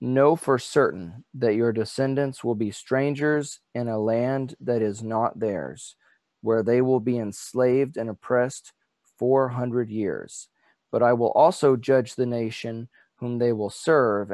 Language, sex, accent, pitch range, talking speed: English, male, American, 115-140 Hz, 155 wpm